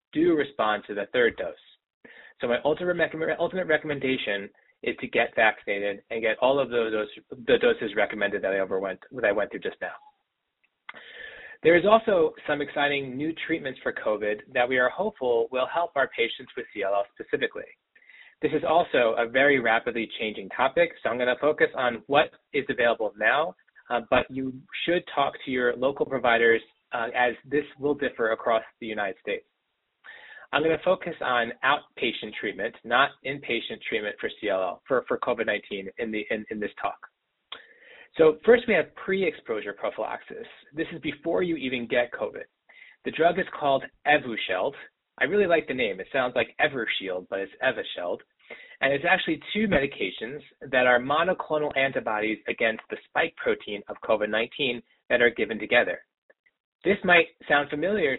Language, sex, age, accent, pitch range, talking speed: English, male, 30-49, American, 120-190 Hz, 165 wpm